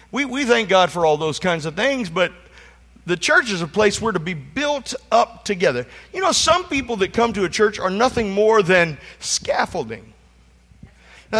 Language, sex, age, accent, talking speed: English, male, 50-69, American, 195 wpm